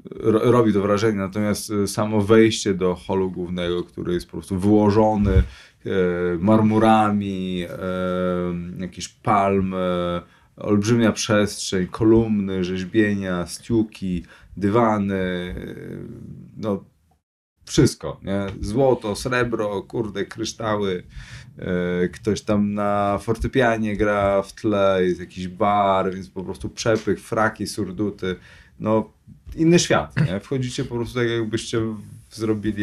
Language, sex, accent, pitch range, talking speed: Polish, male, native, 85-105 Hz, 100 wpm